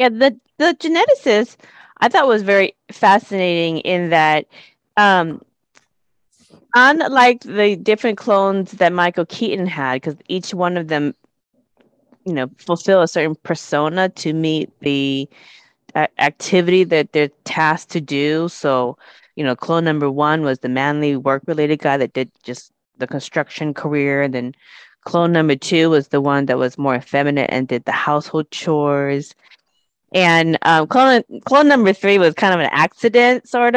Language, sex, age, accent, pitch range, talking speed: English, female, 20-39, American, 155-215 Hz, 155 wpm